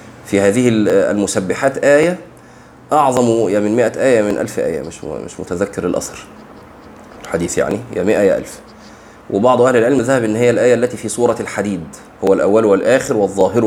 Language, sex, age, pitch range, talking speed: Arabic, male, 30-49, 105-135 Hz, 165 wpm